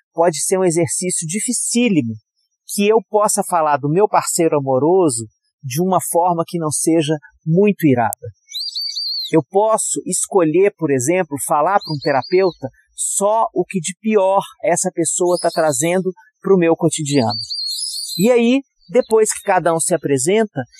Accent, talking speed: Brazilian, 145 wpm